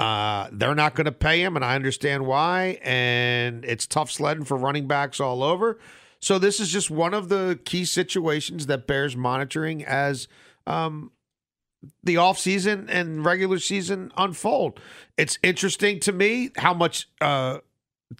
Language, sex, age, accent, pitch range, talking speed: English, male, 40-59, American, 135-175 Hz, 155 wpm